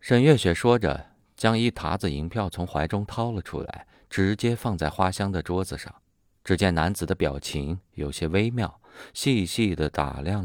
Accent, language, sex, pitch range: native, Chinese, male, 80-105 Hz